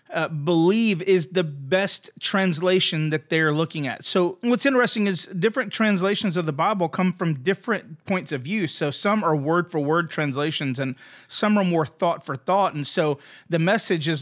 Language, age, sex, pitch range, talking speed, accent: English, 30-49, male, 160-205 Hz, 170 wpm, American